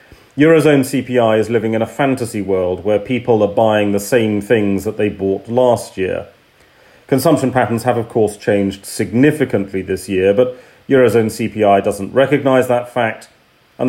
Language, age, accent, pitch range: English, 40-59, British, 100-125 Hz